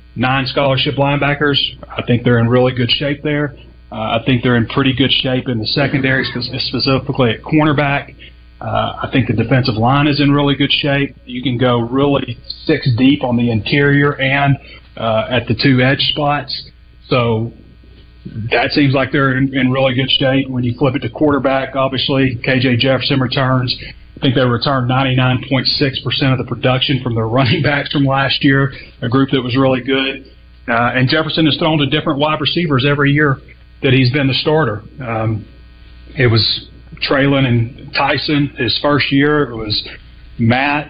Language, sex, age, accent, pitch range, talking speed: English, male, 30-49, American, 120-140 Hz, 175 wpm